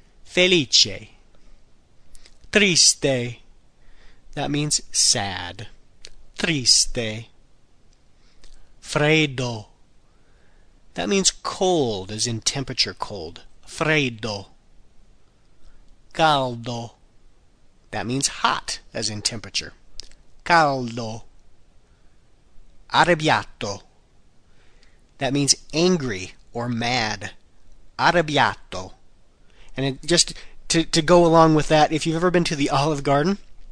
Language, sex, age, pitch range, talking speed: Italian, male, 40-59, 105-155 Hz, 80 wpm